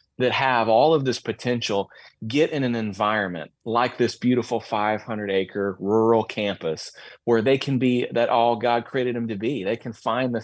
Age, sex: 30-49, male